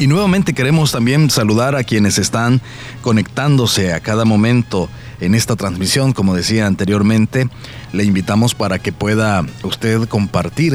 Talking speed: 140 wpm